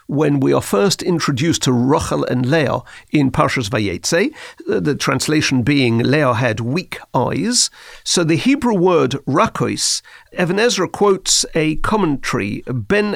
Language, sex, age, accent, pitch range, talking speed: English, male, 50-69, British, 140-190 Hz, 135 wpm